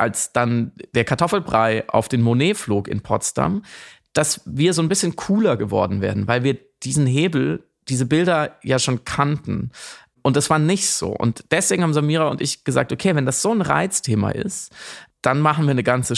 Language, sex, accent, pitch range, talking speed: German, male, German, 120-145 Hz, 190 wpm